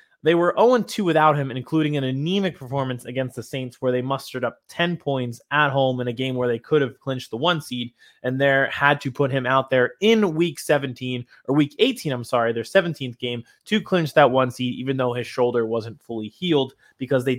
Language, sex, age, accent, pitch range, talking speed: English, male, 20-39, American, 125-155 Hz, 220 wpm